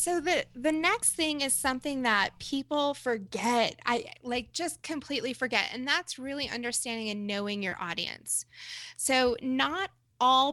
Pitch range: 220-280 Hz